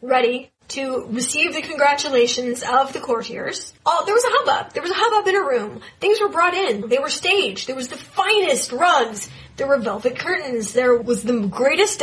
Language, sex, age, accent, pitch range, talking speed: English, female, 30-49, American, 245-315 Hz, 200 wpm